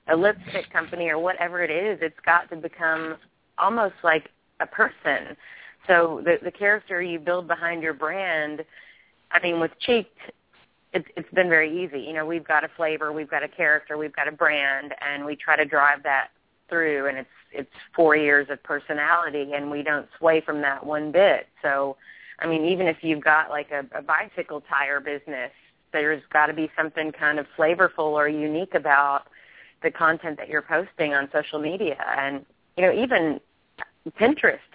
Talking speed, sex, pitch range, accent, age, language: 185 wpm, female, 145-170 Hz, American, 30-49, English